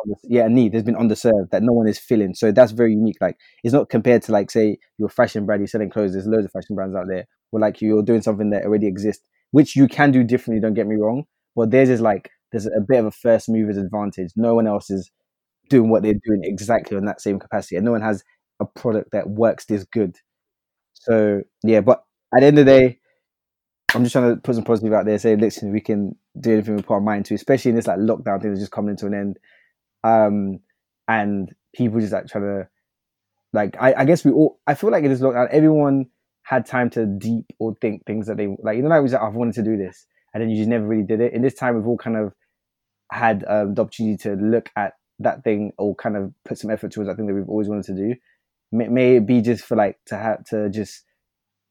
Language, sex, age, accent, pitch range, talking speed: English, male, 20-39, British, 105-120 Hz, 255 wpm